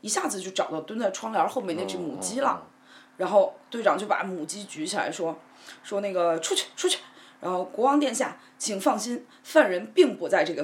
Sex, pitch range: female, 180-280 Hz